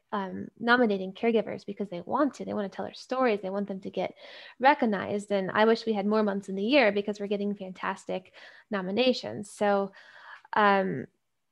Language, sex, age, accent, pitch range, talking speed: English, female, 10-29, American, 195-230 Hz, 190 wpm